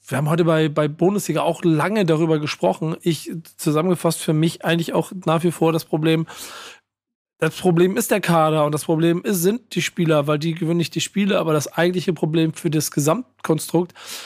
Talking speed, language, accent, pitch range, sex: 190 wpm, German, German, 145-175 Hz, male